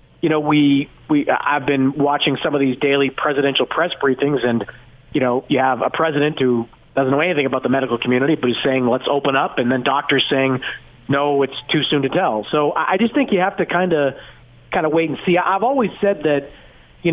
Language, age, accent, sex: English, 40-59, American, male